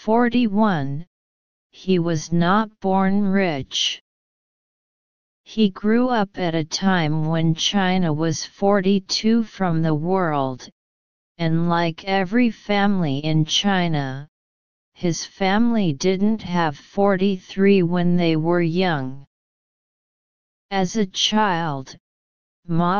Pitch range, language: 155-200 Hz, English